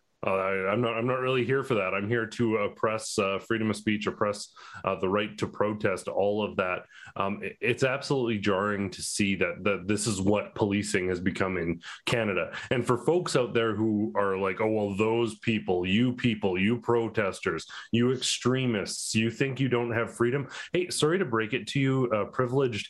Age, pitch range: 30-49, 110-135 Hz